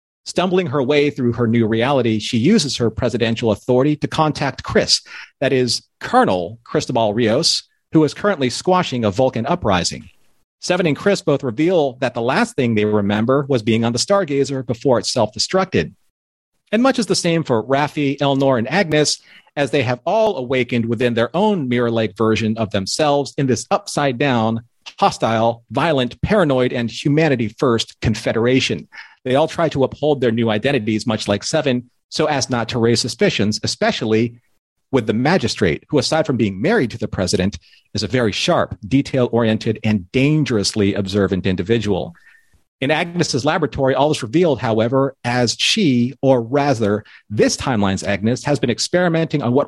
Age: 40-59